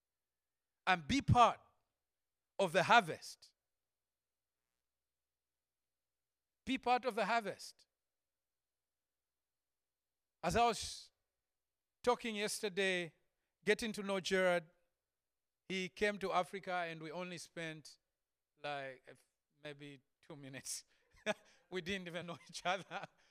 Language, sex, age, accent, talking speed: English, male, 50-69, South African, 100 wpm